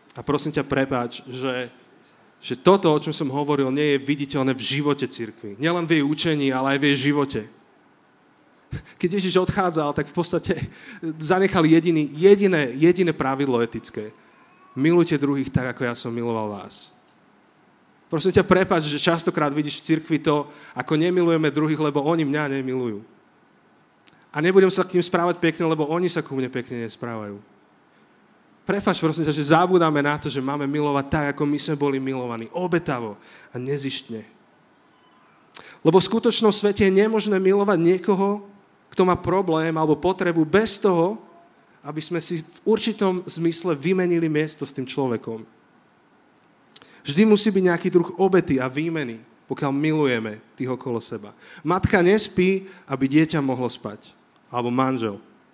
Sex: male